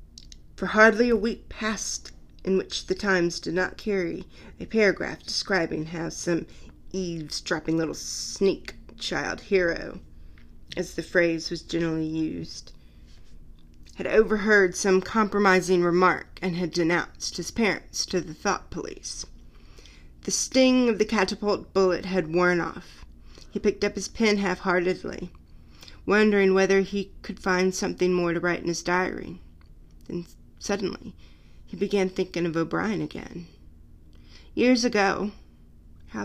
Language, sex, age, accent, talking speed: English, female, 30-49, American, 130 wpm